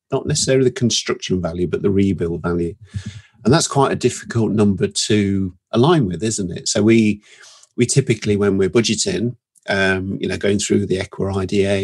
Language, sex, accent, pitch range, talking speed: English, male, British, 95-115 Hz, 175 wpm